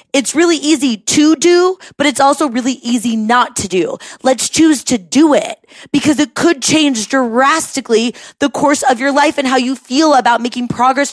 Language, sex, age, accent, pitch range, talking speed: English, female, 20-39, American, 225-290 Hz, 190 wpm